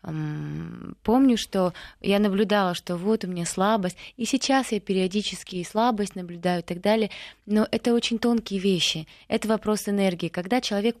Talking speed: 155 wpm